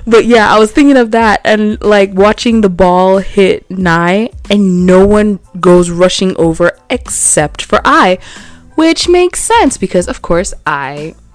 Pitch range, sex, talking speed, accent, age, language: 180-255 Hz, female, 160 wpm, American, 20-39, English